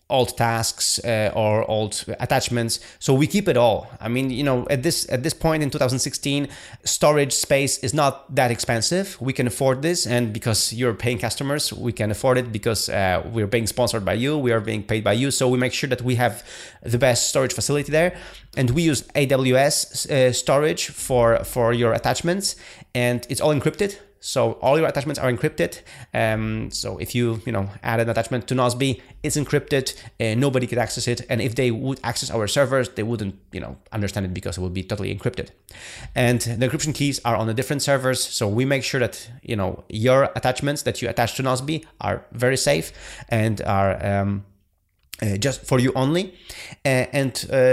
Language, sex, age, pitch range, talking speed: English, male, 30-49, 110-140 Hz, 195 wpm